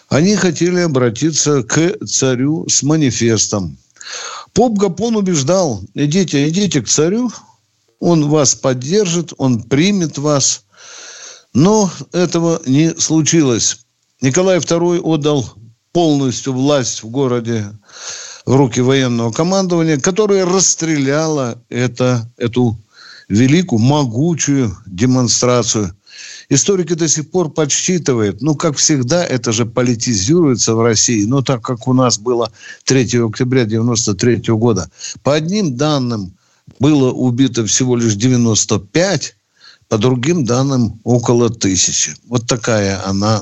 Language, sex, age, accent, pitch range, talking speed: Russian, male, 60-79, native, 115-160 Hz, 110 wpm